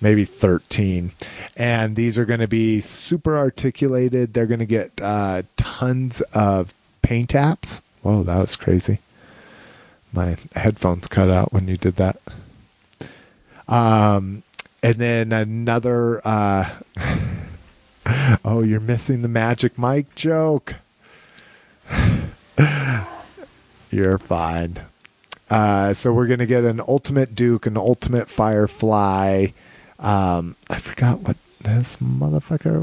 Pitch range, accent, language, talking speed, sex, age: 95-120 Hz, American, English, 115 wpm, male, 30-49